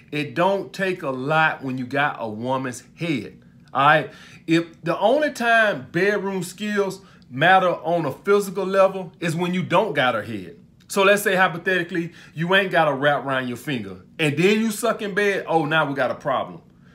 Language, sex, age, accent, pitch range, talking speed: English, male, 30-49, American, 130-175 Hz, 195 wpm